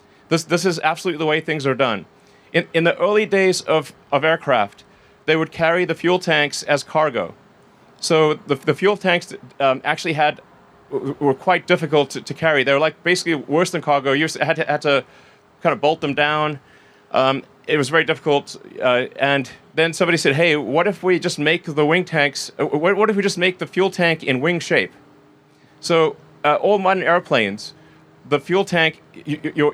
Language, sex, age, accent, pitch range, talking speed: English, male, 30-49, American, 140-170 Hz, 190 wpm